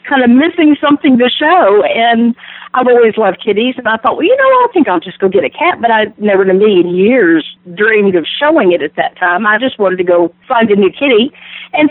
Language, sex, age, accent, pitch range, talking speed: English, female, 50-69, American, 185-275 Hz, 245 wpm